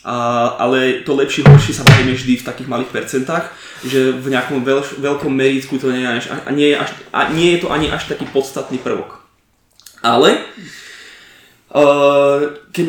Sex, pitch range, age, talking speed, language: male, 125-140 Hz, 20-39, 175 wpm, Slovak